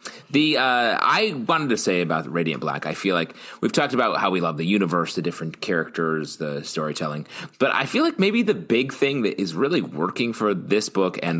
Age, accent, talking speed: 30-49, American, 215 wpm